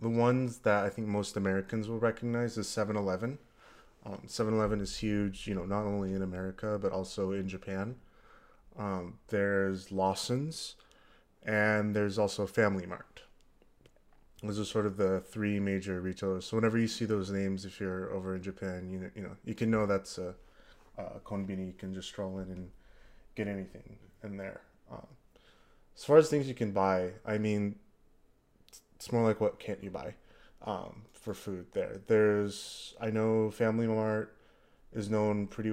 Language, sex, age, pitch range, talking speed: English, male, 20-39, 95-110 Hz, 170 wpm